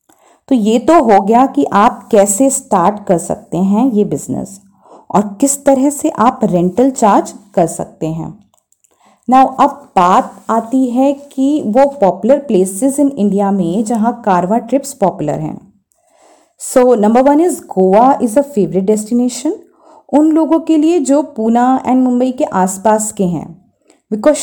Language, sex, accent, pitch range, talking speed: Hindi, female, native, 205-275 Hz, 155 wpm